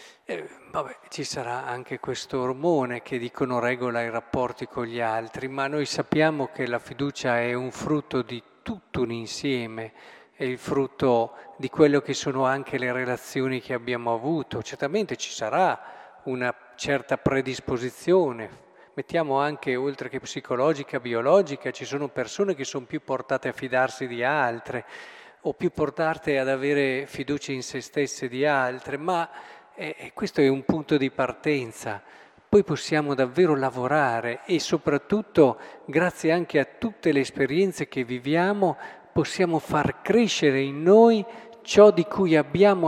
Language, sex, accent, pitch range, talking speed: Italian, male, native, 130-175 Hz, 145 wpm